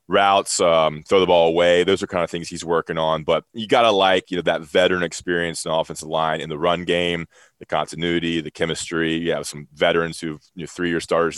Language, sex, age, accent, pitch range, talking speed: English, male, 20-39, American, 80-95 Hz, 225 wpm